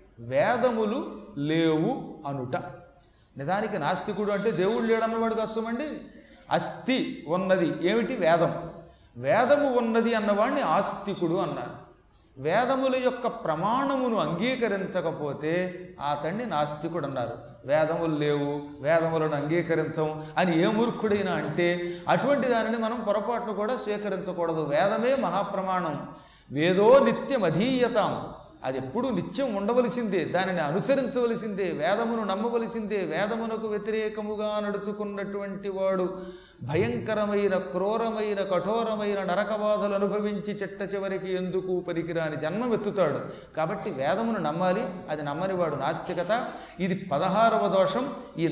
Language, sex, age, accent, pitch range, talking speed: Telugu, male, 30-49, native, 165-220 Hz, 95 wpm